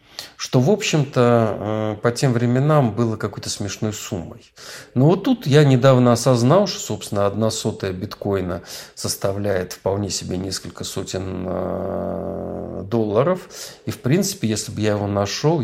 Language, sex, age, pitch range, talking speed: Russian, male, 50-69, 105-140 Hz, 135 wpm